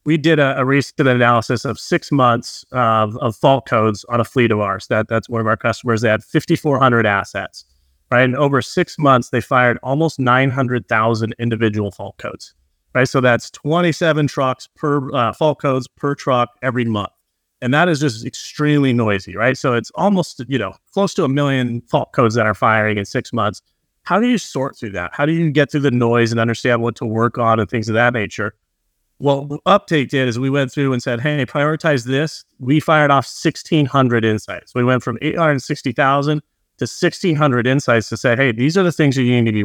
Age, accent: 30-49, American